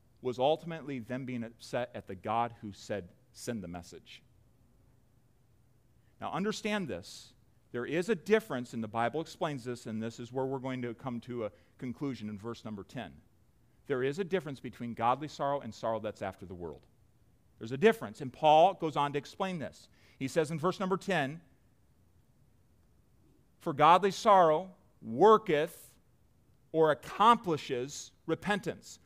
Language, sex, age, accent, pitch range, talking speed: English, male, 40-59, American, 125-205 Hz, 155 wpm